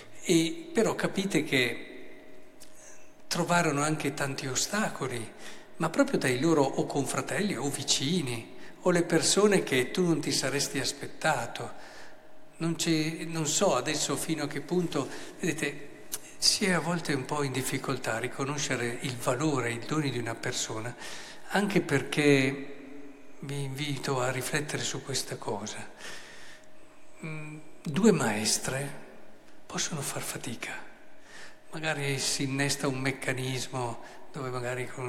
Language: Italian